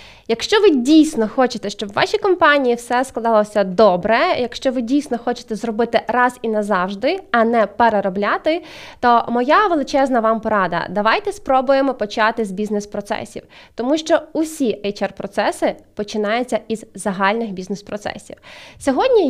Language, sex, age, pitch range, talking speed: Ukrainian, female, 20-39, 215-290 Hz, 130 wpm